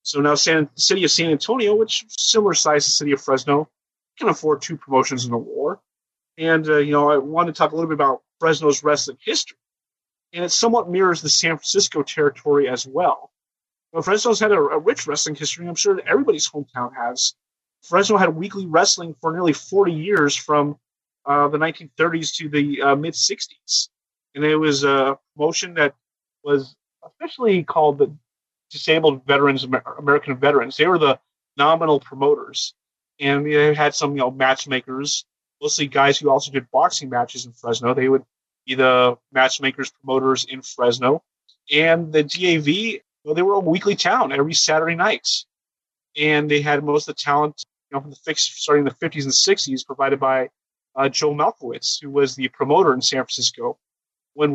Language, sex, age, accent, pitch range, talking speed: English, male, 30-49, American, 135-165 Hz, 185 wpm